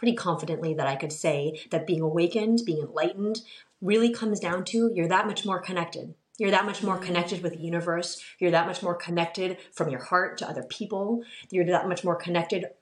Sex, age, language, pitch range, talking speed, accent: female, 30-49, English, 165-215 Hz, 205 wpm, American